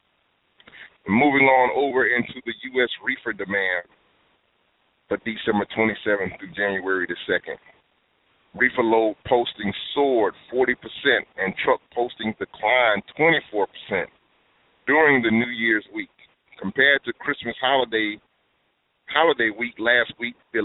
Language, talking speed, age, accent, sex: English, 115 wpm, 30-49, American, male